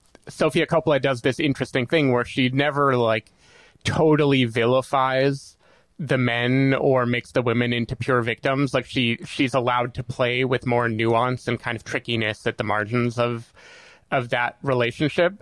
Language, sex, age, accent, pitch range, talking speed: English, male, 20-39, American, 110-130 Hz, 160 wpm